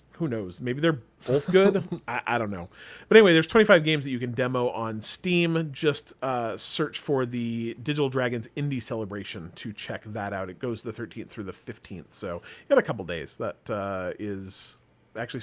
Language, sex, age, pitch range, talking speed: English, male, 40-59, 115-150 Hz, 200 wpm